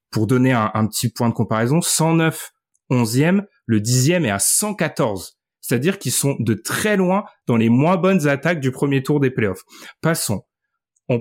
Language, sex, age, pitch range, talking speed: French, male, 30-49, 120-160 Hz, 175 wpm